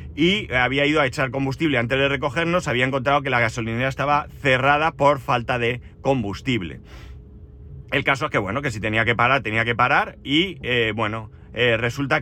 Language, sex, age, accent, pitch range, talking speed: Spanish, male, 30-49, Spanish, 115-140 Hz, 185 wpm